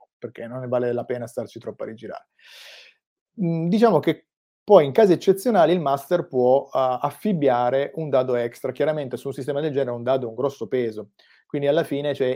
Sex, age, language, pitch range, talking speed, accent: male, 30-49, Italian, 125-145 Hz, 190 wpm, native